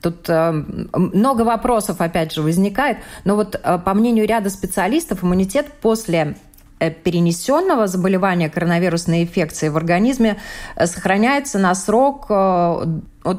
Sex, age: female, 20-39